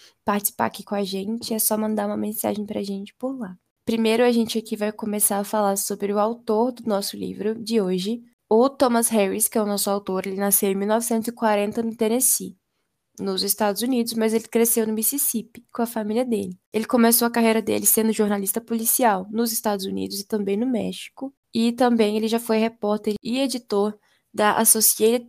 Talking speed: 190 wpm